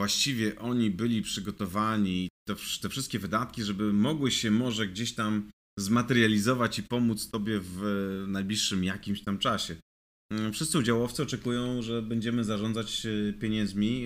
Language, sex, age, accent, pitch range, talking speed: Polish, male, 30-49, native, 105-125 Hz, 130 wpm